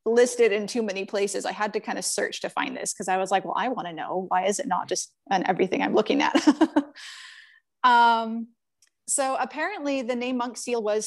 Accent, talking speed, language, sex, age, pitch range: American, 220 wpm, English, female, 20-39, 195-245 Hz